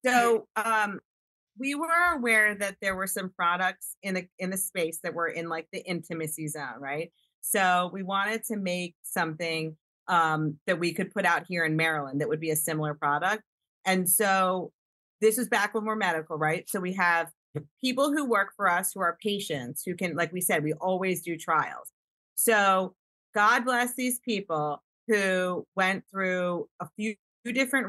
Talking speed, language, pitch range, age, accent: 185 wpm, English, 170-215 Hz, 30-49, American